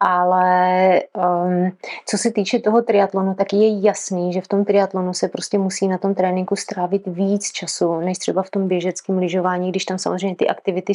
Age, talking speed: 30-49, 185 wpm